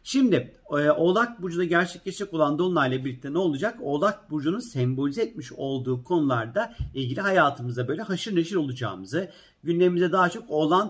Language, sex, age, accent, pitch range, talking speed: Turkish, male, 40-59, native, 130-170 Hz, 145 wpm